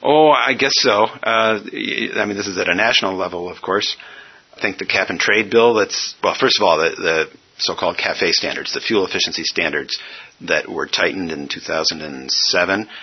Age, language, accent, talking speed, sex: 50-69, English, American, 180 wpm, male